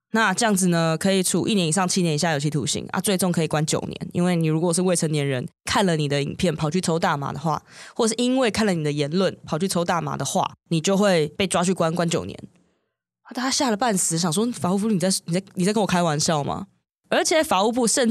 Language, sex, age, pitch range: Chinese, female, 20-39, 160-210 Hz